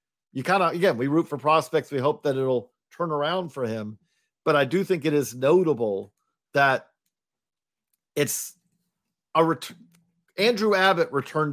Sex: male